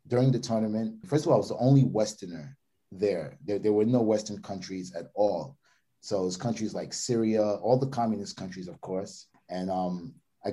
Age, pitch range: 30-49, 100-130 Hz